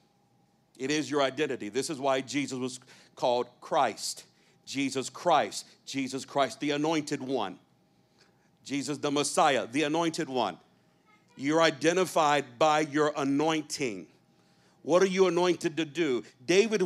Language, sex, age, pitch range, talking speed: English, male, 50-69, 140-180 Hz, 130 wpm